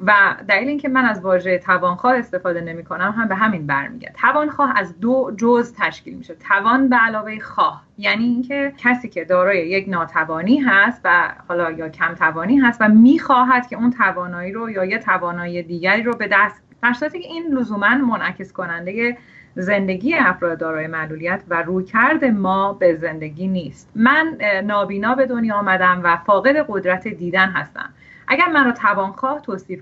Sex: female